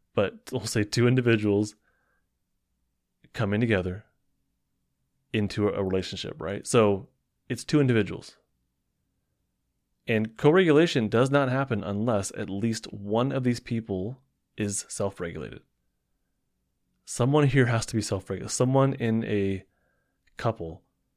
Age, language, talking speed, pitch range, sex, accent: 20-39, English, 110 wpm, 95-120 Hz, male, American